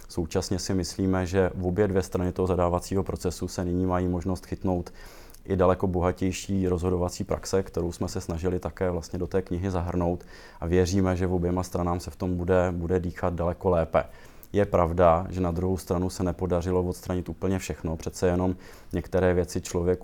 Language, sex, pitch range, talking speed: Czech, male, 85-95 Hz, 185 wpm